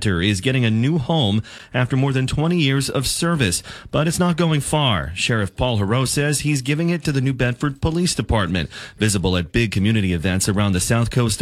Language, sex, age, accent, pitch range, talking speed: English, male, 30-49, American, 95-130 Hz, 205 wpm